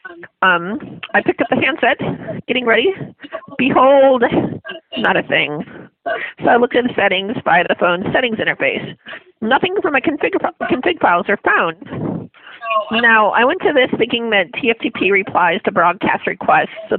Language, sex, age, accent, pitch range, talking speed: English, female, 40-59, American, 210-315 Hz, 155 wpm